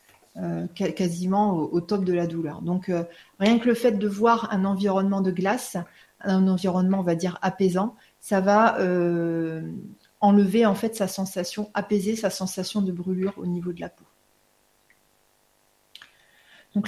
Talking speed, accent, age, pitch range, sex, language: 160 wpm, French, 30-49, 185-225 Hz, female, French